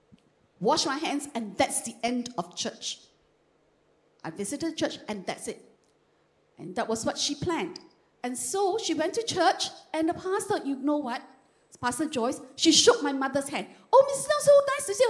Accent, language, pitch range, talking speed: Malaysian, English, 245-360 Hz, 165 wpm